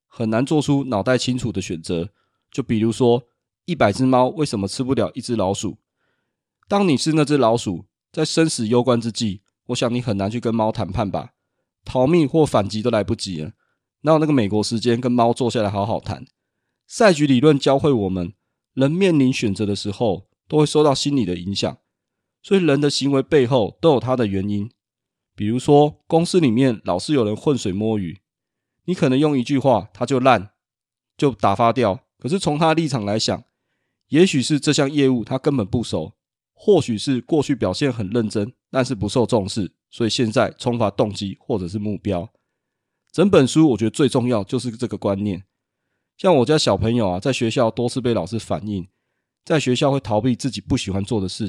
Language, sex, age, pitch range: Chinese, male, 20-39, 105-135 Hz